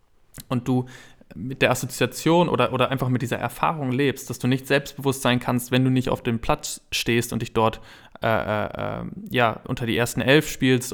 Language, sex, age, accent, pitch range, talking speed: German, male, 20-39, German, 115-130 Hz, 195 wpm